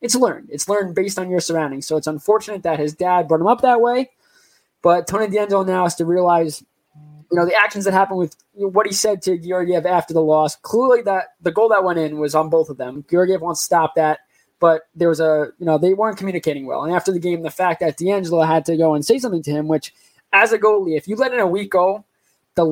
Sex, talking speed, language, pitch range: male, 255 wpm, English, 160-210 Hz